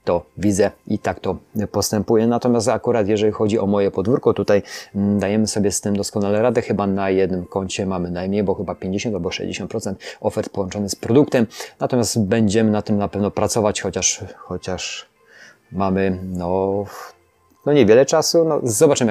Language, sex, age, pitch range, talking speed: Polish, male, 30-49, 100-115 Hz, 160 wpm